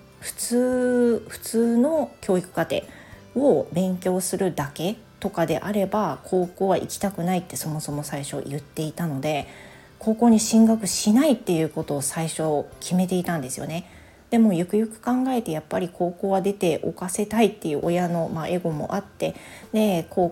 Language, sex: Japanese, female